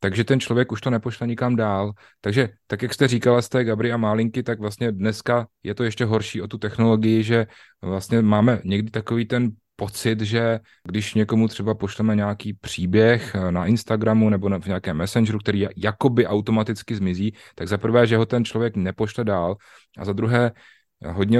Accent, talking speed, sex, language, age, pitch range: native, 180 wpm, male, Czech, 30-49, 100-115 Hz